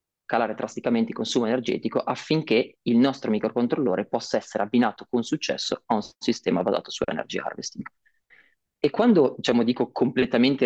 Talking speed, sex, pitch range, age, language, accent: 140 wpm, male, 115-130 Hz, 30-49, Italian, native